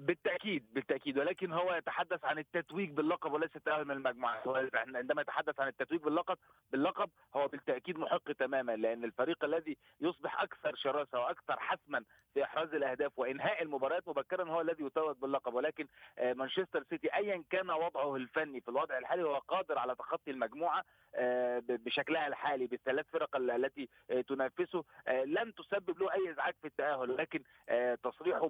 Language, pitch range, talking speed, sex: Arabic, 130-170 Hz, 145 wpm, male